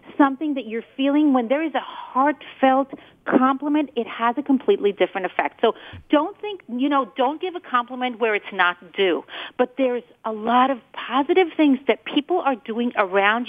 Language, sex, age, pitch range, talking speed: English, female, 40-59, 230-310 Hz, 180 wpm